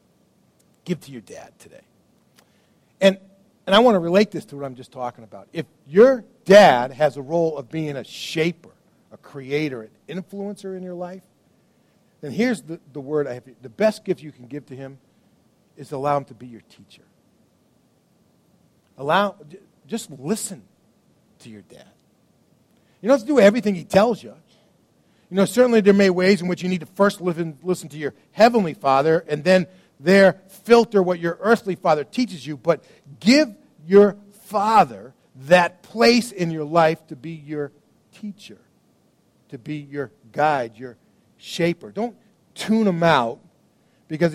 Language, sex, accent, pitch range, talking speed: English, male, American, 150-205 Hz, 170 wpm